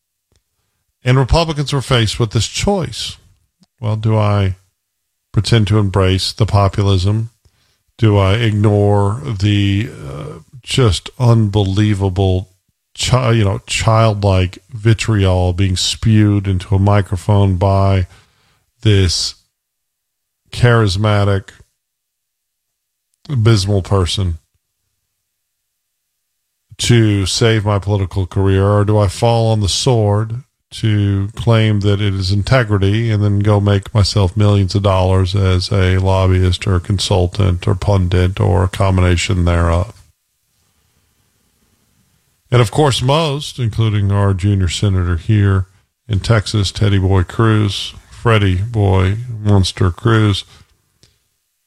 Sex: male